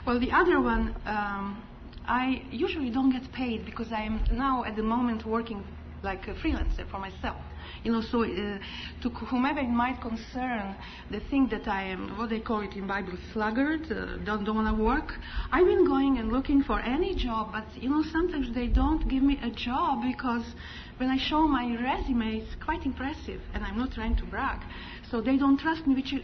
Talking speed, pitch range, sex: 200 wpm, 220-275 Hz, female